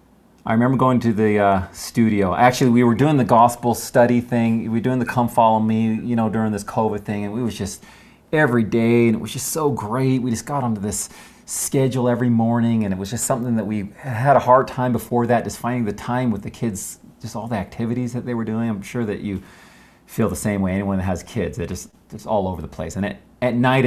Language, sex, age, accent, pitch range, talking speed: English, male, 40-59, American, 105-125 Hz, 250 wpm